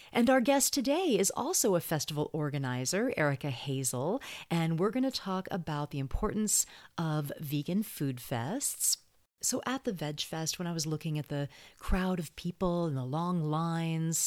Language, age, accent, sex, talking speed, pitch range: English, 40-59, American, female, 170 wpm, 145-200 Hz